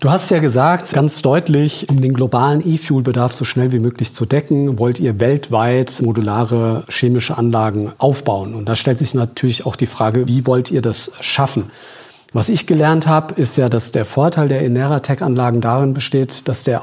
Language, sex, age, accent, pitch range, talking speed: German, male, 50-69, German, 125-155 Hz, 180 wpm